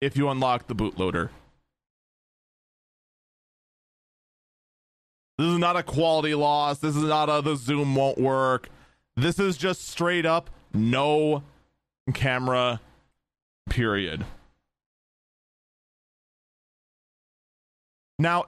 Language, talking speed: English, 90 wpm